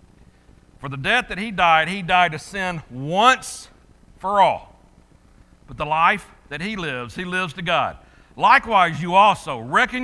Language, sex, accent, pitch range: English, male, American, 130-195 Hz